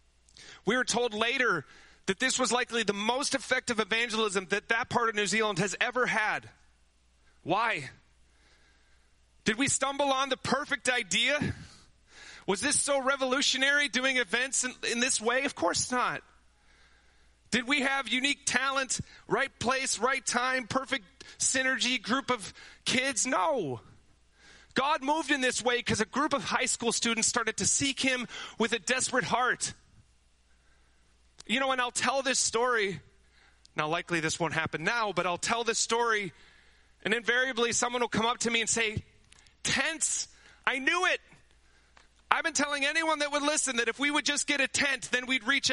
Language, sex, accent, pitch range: English, male, American, 200-275 Hz